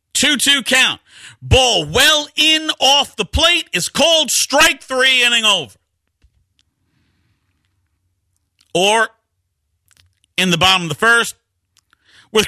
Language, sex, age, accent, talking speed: English, male, 50-69, American, 110 wpm